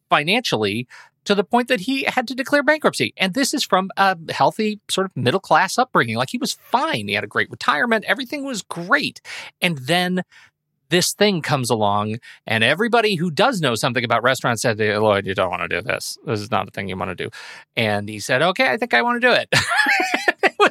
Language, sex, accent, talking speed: English, male, American, 215 wpm